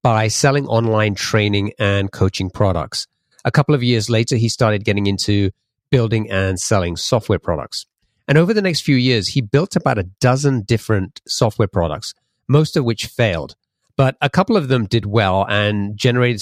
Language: English